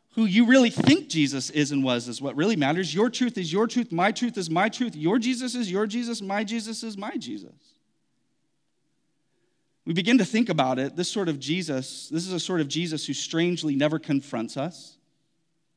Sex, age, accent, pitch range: male, 30-49, American, 145-205 Hz